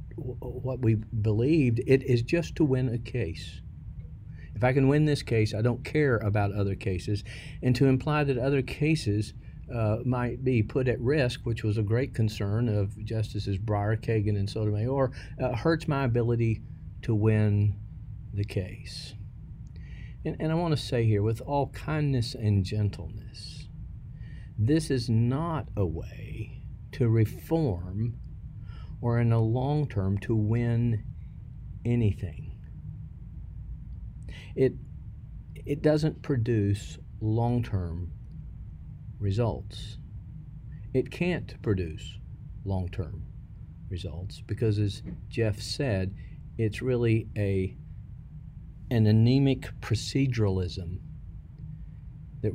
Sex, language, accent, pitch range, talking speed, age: male, English, American, 105-130 Hz, 115 wpm, 50-69